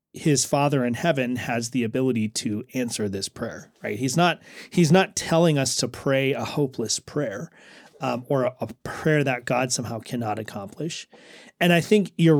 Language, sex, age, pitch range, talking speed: English, male, 30-49, 125-165 Hz, 180 wpm